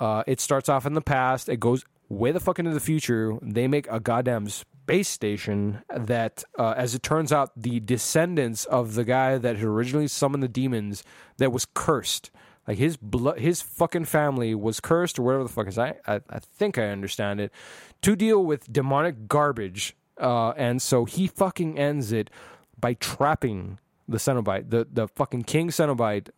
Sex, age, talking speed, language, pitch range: male, 20-39, 185 wpm, English, 115-150 Hz